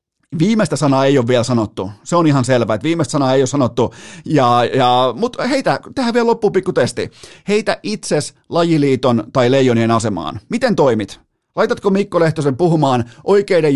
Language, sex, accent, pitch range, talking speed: Finnish, male, native, 120-155 Hz, 160 wpm